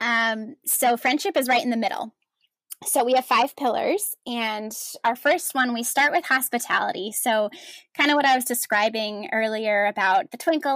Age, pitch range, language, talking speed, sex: 10-29, 225-285 Hz, English, 180 wpm, female